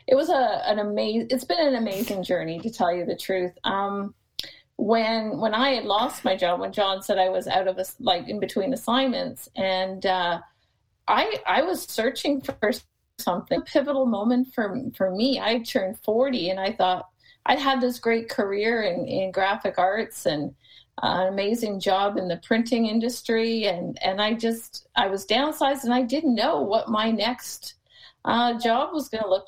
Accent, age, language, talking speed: American, 40-59, English, 190 wpm